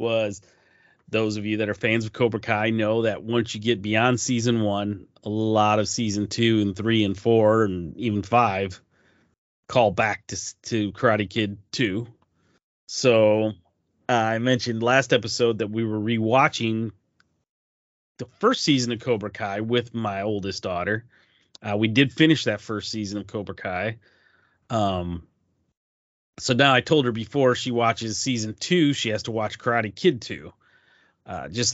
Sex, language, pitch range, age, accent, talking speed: male, English, 100-120 Hz, 30-49, American, 165 wpm